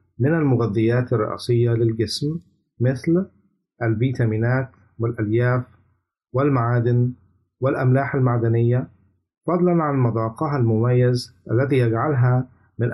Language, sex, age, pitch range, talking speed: Arabic, male, 50-69, 115-140 Hz, 80 wpm